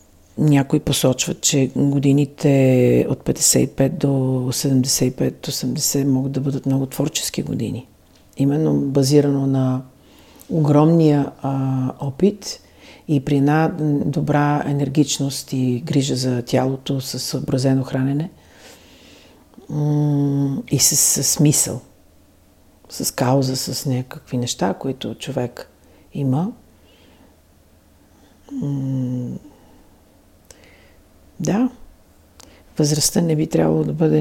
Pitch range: 105-145 Hz